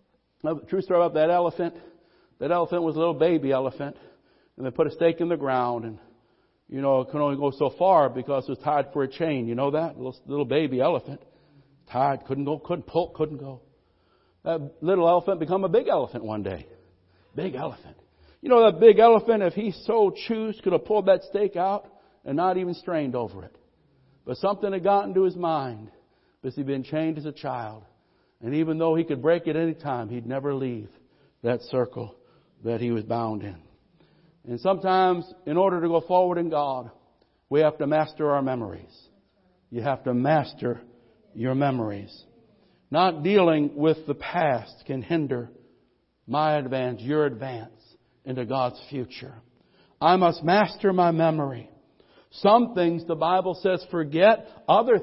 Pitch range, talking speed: 130-190 Hz, 180 wpm